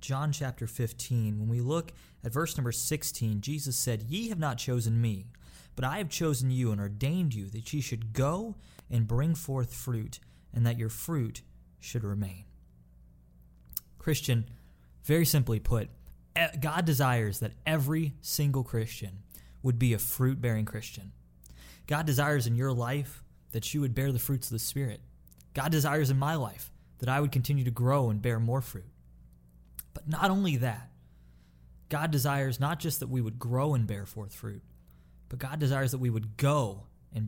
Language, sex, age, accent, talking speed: English, male, 20-39, American, 175 wpm